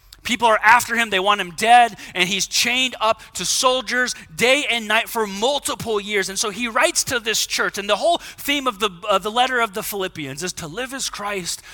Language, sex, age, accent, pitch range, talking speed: English, male, 30-49, American, 135-210 Hz, 220 wpm